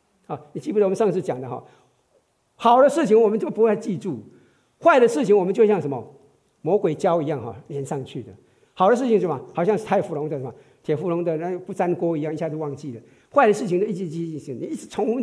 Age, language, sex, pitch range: 50-69, Chinese, male, 135-215 Hz